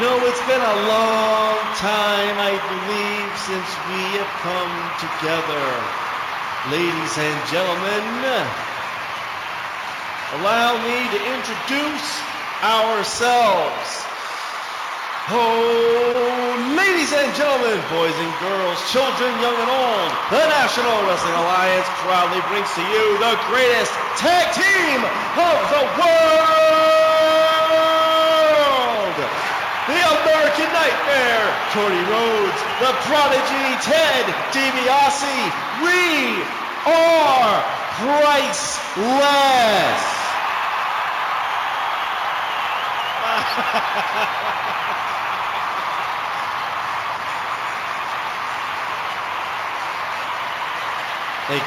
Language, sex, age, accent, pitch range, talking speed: English, male, 40-59, American, 205-305 Hz, 70 wpm